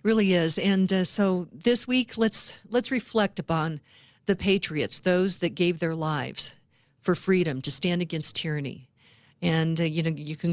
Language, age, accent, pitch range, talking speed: English, 50-69, American, 160-195 Hz, 170 wpm